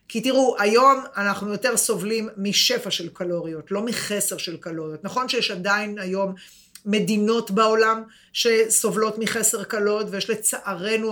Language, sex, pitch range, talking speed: Hebrew, female, 190-225 Hz, 130 wpm